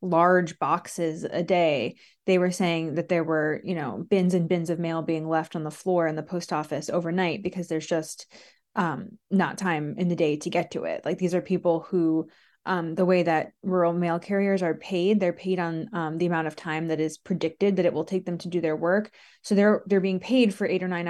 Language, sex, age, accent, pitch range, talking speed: English, female, 20-39, American, 160-185 Hz, 235 wpm